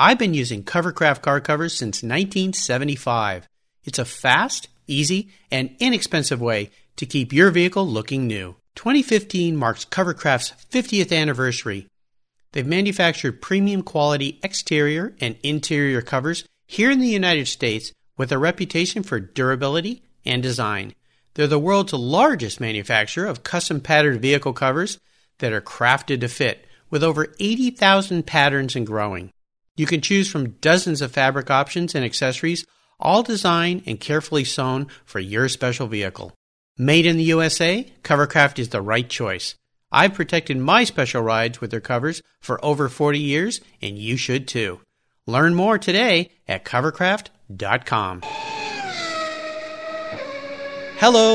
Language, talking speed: English, 135 wpm